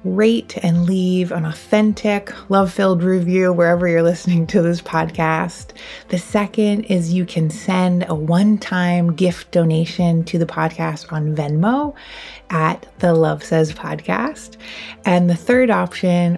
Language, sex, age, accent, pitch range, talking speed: English, female, 20-39, American, 160-185 Hz, 135 wpm